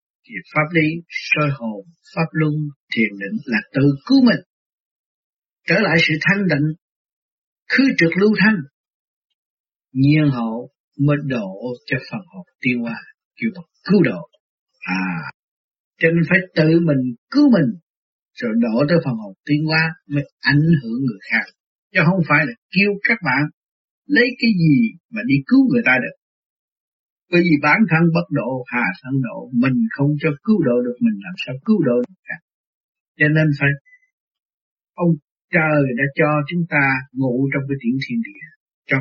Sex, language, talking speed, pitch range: male, Vietnamese, 165 wpm, 135-185 Hz